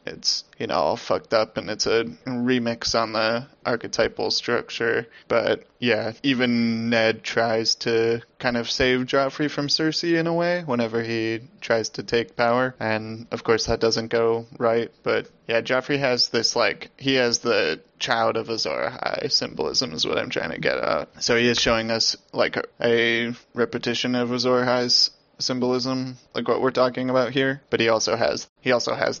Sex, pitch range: male, 115-130 Hz